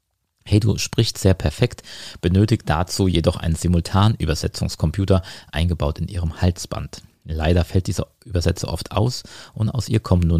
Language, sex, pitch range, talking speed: German, male, 85-105 Hz, 145 wpm